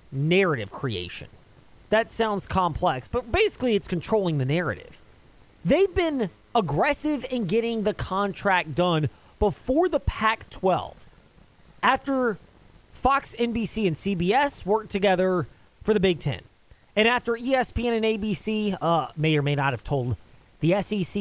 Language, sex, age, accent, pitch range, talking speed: English, male, 30-49, American, 170-235 Hz, 135 wpm